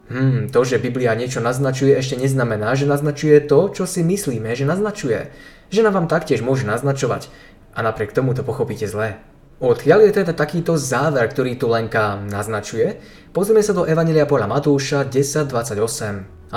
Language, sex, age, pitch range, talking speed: Slovak, male, 20-39, 115-150 Hz, 160 wpm